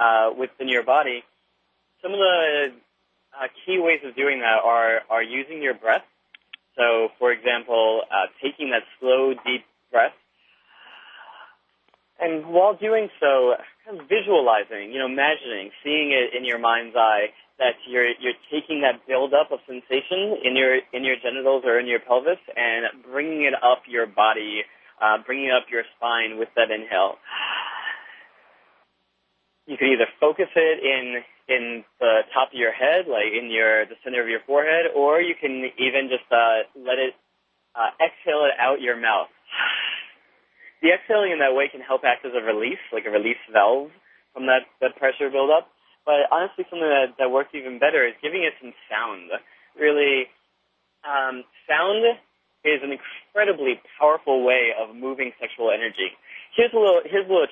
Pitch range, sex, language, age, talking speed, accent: 120-155 Hz, male, English, 30-49, 165 wpm, American